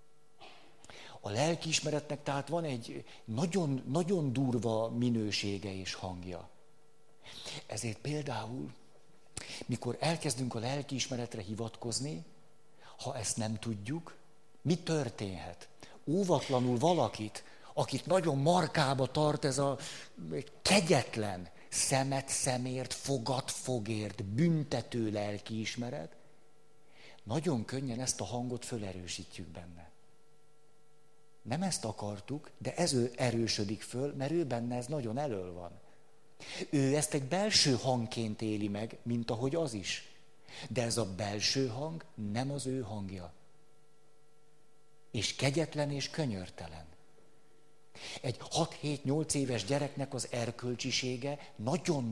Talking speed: 105 wpm